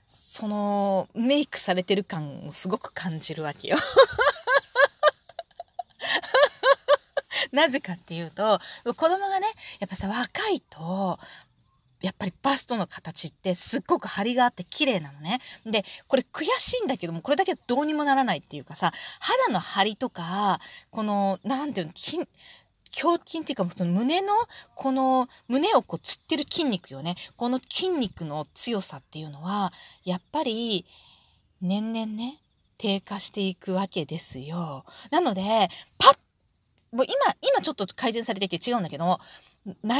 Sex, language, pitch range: female, Japanese, 180-285 Hz